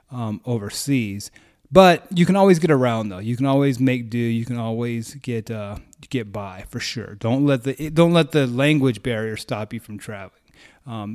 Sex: male